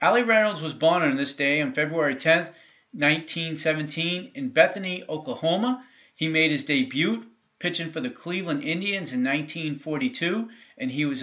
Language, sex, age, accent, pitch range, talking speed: English, male, 40-59, American, 145-215 Hz, 150 wpm